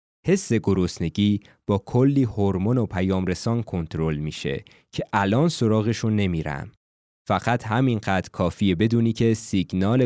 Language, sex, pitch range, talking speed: Persian, male, 95-130 Hz, 115 wpm